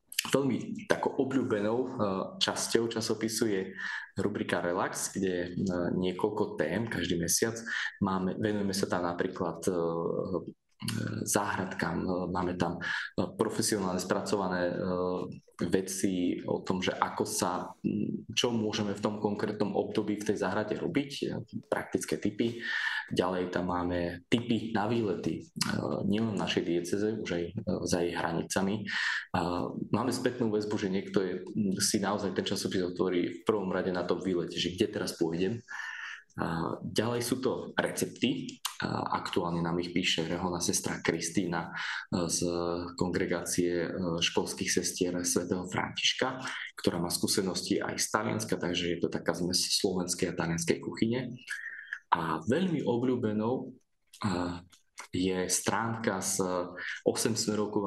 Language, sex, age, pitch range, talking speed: Slovak, male, 20-39, 90-110 Hz, 120 wpm